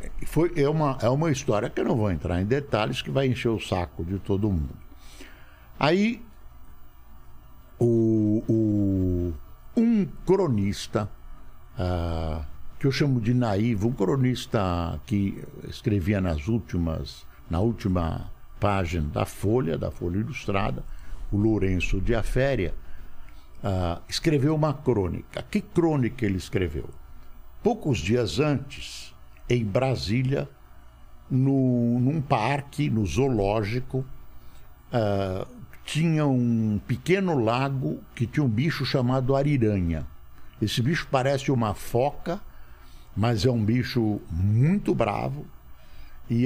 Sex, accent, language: male, Brazilian, Portuguese